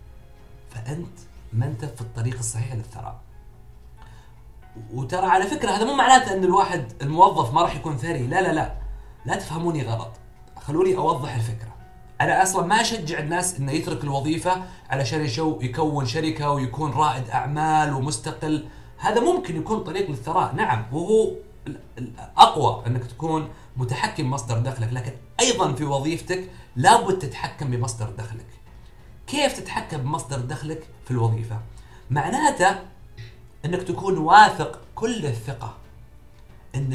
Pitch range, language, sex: 120-165 Hz, Arabic, male